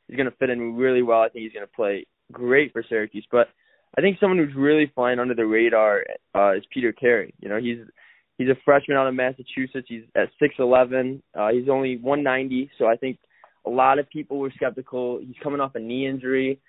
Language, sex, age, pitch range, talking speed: English, male, 20-39, 115-135 Hz, 220 wpm